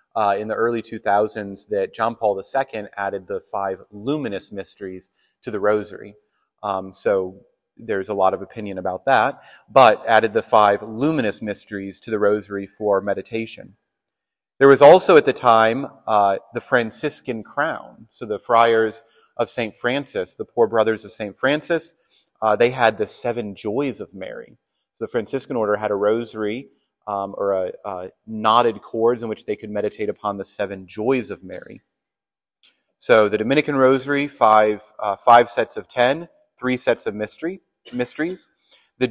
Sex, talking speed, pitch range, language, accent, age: male, 165 wpm, 105-130 Hz, English, American, 30-49